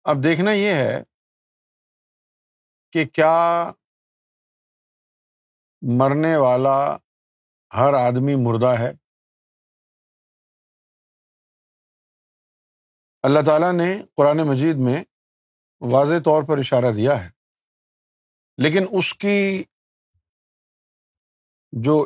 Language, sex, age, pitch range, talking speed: Urdu, male, 50-69, 120-160 Hz, 75 wpm